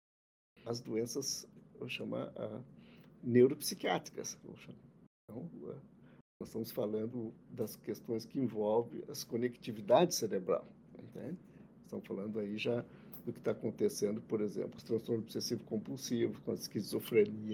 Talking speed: 135 wpm